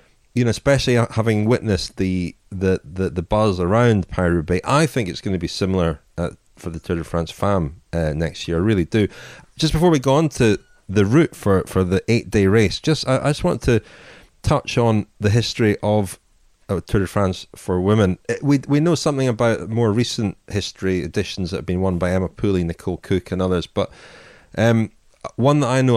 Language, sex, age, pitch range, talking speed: English, male, 30-49, 90-115 Hz, 210 wpm